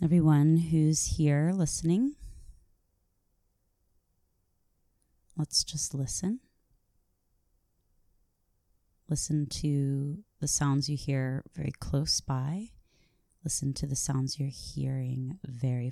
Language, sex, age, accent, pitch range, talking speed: English, female, 20-39, American, 130-165 Hz, 85 wpm